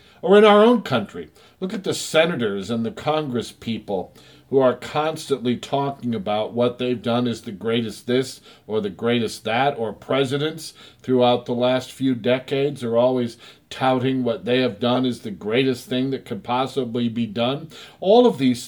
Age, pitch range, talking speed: 50-69, 120-155 Hz, 175 wpm